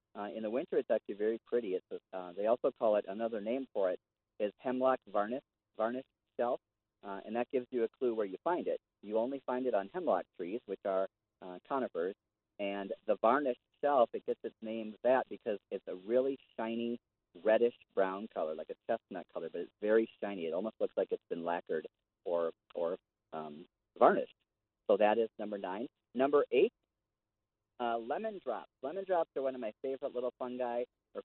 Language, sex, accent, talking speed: English, male, American, 195 wpm